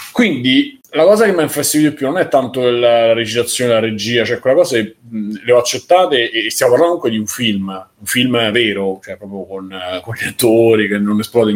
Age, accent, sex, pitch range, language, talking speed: 20-39, native, male, 105-130 Hz, Italian, 215 wpm